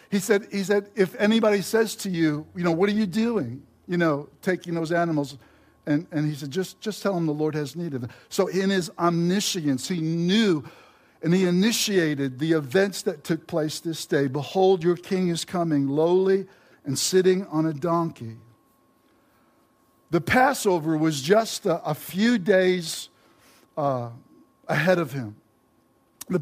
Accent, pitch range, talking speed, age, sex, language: American, 145-190 Hz, 165 wpm, 60-79, male, English